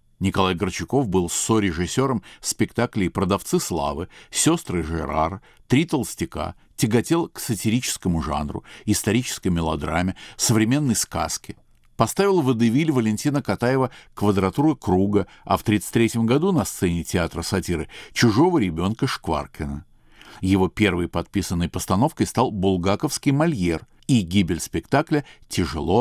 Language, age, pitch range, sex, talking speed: Russian, 50-69, 85-120 Hz, male, 115 wpm